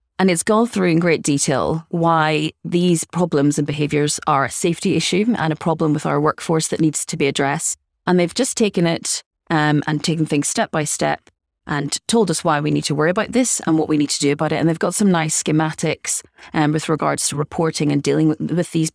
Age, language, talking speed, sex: 30-49, English, 230 wpm, female